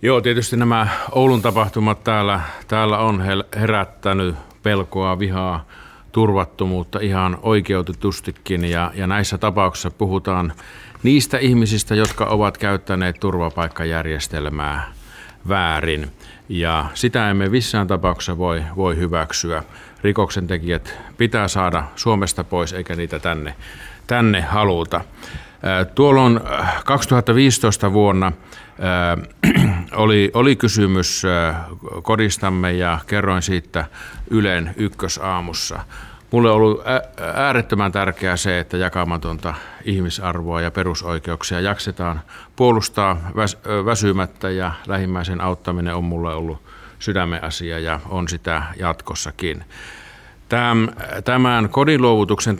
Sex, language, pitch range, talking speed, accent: male, Finnish, 85-110 Hz, 100 wpm, native